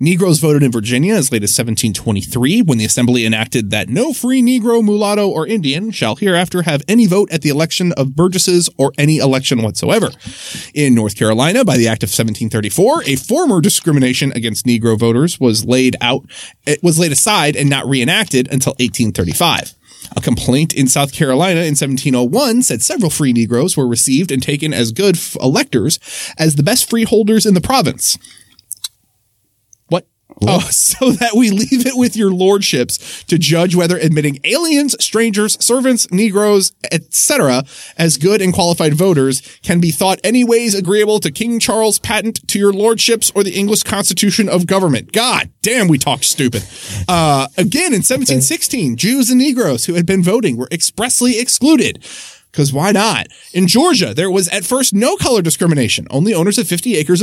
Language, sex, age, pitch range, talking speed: English, male, 30-49, 130-205 Hz, 170 wpm